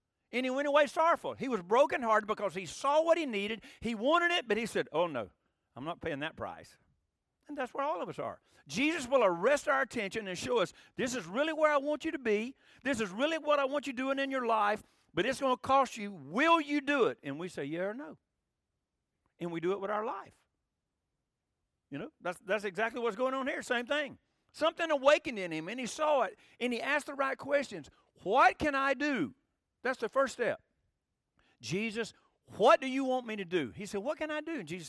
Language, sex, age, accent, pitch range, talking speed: English, male, 50-69, American, 190-285 Hz, 230 wpm